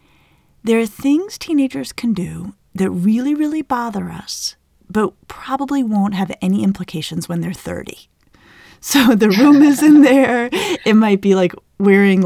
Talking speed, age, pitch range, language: 150 wpm, 30-49, 175-220 Hz, English